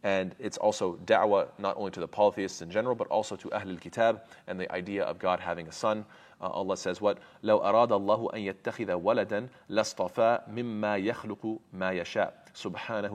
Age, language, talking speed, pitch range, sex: 30-49, English, 125 wpm, 95-110 Hz, male